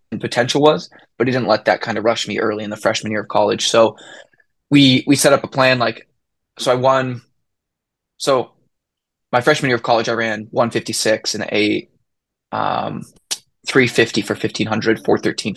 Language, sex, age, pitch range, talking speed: English, male, 20-39, 110-125 Hz, 175 wpm